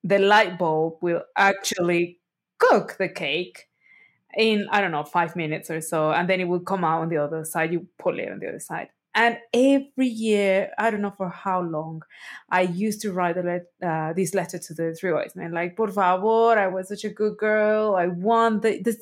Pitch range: 175-240 Hz